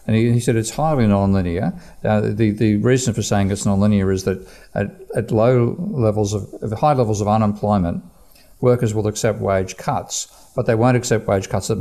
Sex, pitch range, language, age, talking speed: male, 95-115 Hz, English, 50-69, 205 wpm